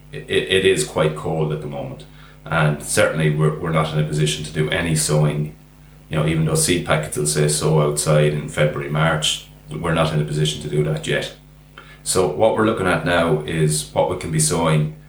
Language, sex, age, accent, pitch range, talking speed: English, male, 30-49, Irish, 75-80 Hz, 215 wpm